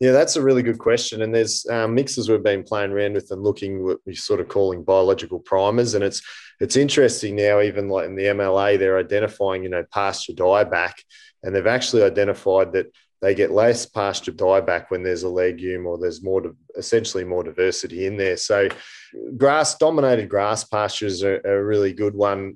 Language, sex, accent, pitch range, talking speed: English, male, Australian, 100-130 Hz, 190 wpm